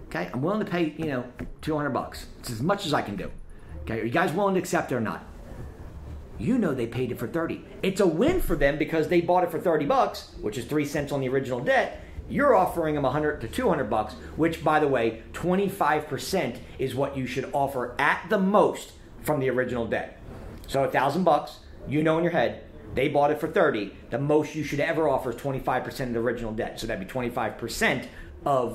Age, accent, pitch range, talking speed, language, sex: 40-59, American, 120-160 Hz, 225 wpm, English, male